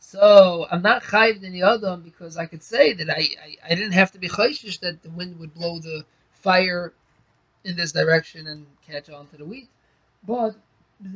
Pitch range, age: 170-210 Hz, 20-39